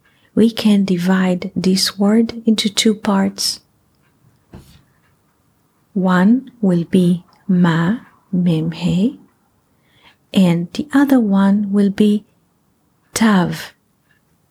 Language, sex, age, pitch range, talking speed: English, female, 30-49, 175-210 Hz, 85 wpm